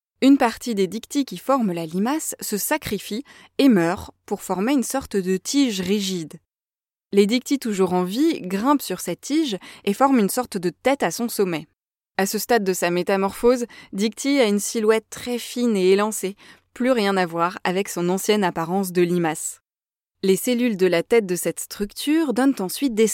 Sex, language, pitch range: female, French, 180-235 Hz